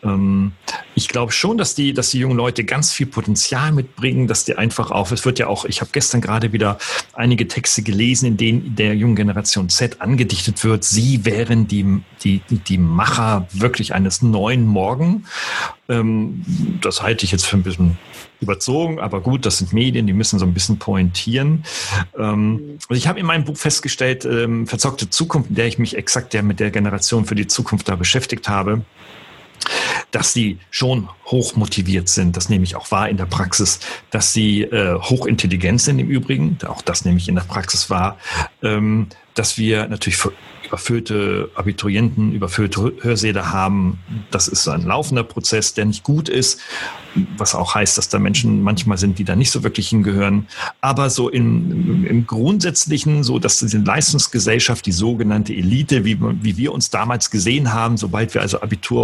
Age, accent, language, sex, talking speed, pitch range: 40-59, German, German, male, 175 wpm, 100-125 Hz